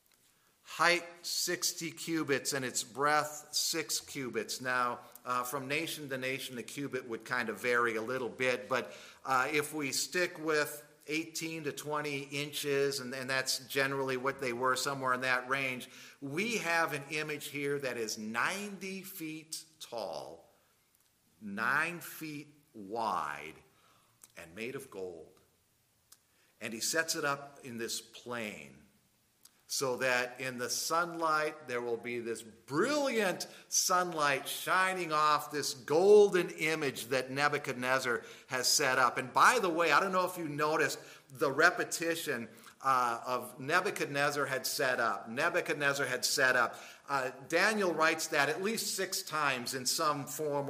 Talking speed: 145 wpm